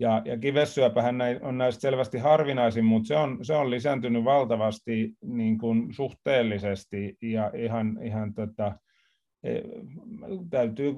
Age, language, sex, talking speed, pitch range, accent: 30-49, Finnish, male, 115 wpm, 115-135 Hz, native